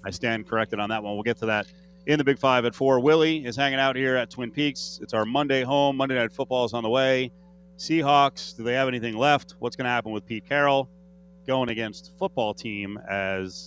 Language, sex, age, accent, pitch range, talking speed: English, male, 30-49, American, 115-175 Hz, 235 wpm